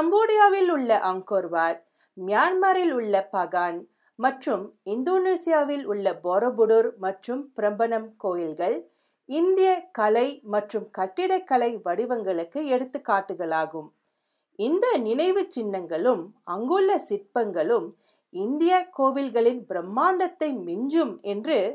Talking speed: 65 wpm